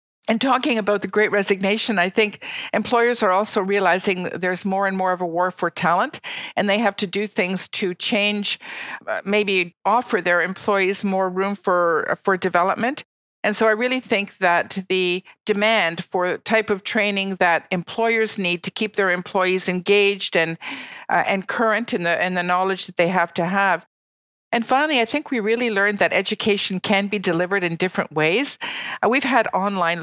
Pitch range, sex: 185-220 Hz, female